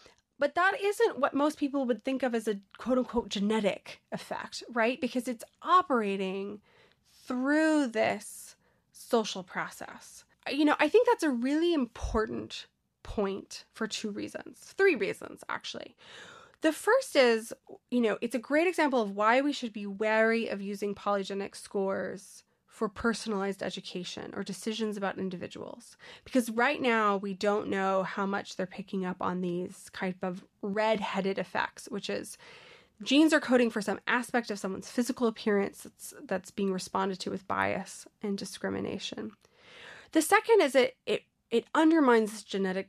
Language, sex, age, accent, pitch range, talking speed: English, female, 20-39, American, 200-280 Hz, 155 wpm